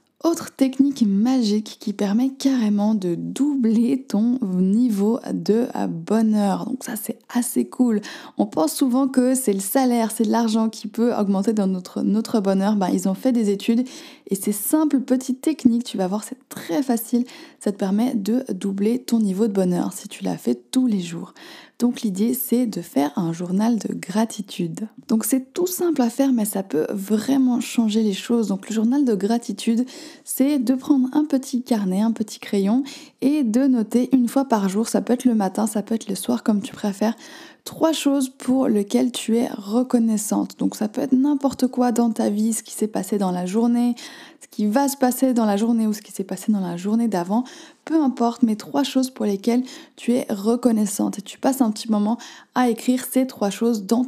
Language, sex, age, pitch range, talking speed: French, female, 20-39, 210-260 Hz, 205 wpm